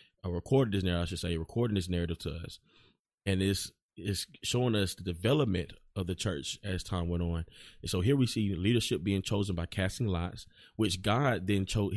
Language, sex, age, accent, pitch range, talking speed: English, male, 20-39, American, 90-105 Hz, 205 wpm